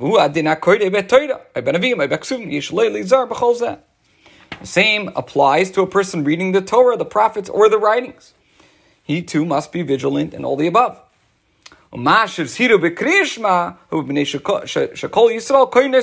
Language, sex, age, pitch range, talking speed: English, male, 40-59, 155-245 Hz, 85 wpm